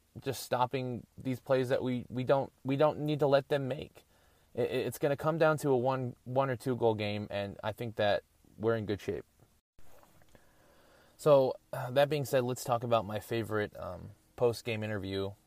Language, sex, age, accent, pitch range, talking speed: English, male, 20-39, American, 105-130 Hz, 195 wpm